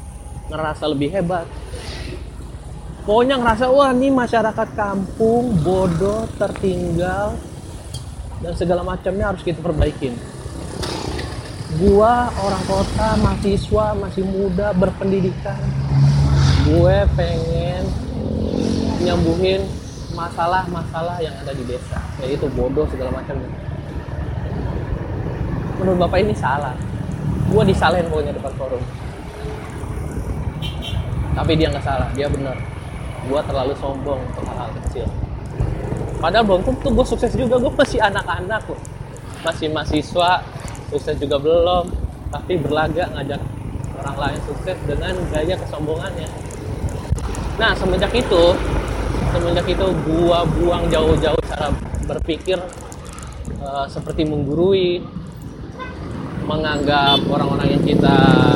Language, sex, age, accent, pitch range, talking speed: Indonesian, male, 20-39, native, 125-180 Hz, 100 wpm